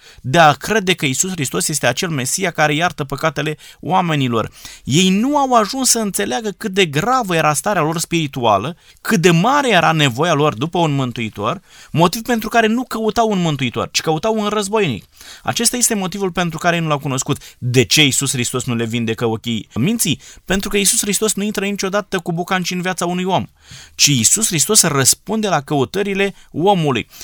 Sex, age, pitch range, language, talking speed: male, 20-39, 140-195 Hz, Romanian, 185 wpm